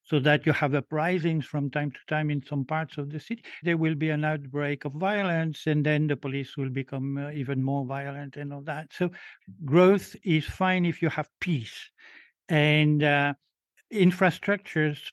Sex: male